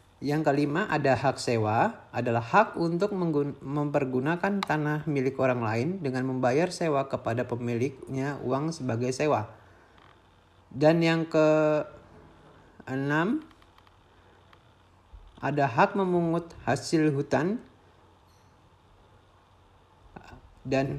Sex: male